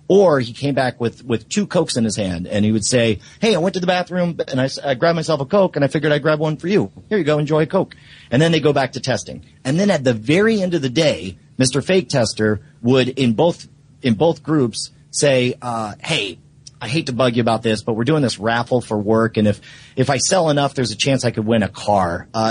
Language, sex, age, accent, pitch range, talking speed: English, male, 40-59, American, 115-155 Hz, 265 wpm